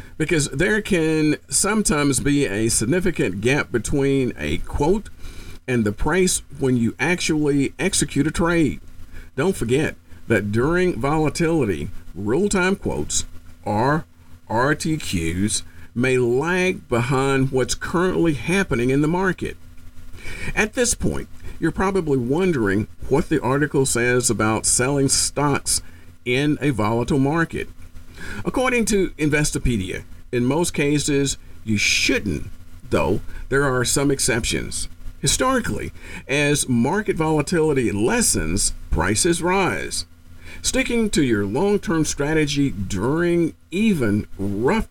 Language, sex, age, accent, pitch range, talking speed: English, male, 50-69, American, 95-155 Hz, 110 wpm